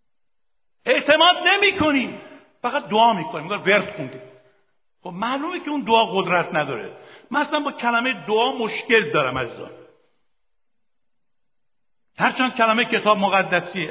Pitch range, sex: 185-275 Hz, male